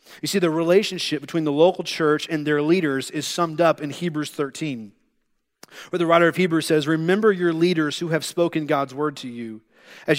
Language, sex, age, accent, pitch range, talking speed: English, male, 30-49, American, 150-185 Hz, 200 wpm